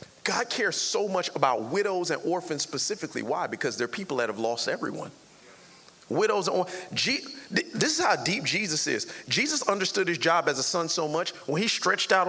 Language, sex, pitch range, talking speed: English, male, 160-210 Hz, 195 wpm